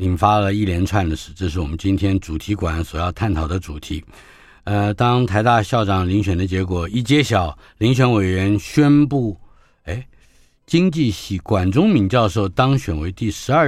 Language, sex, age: Chinese, male, 50-69